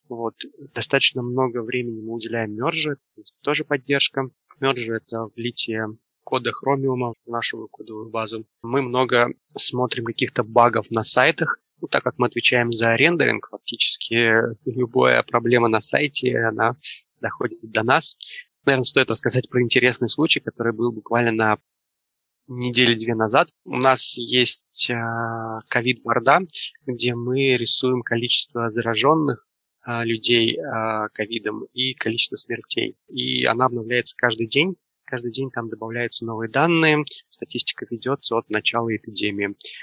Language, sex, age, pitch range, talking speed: Russian, male, 20-39, 115-125 Hz, 125 wpm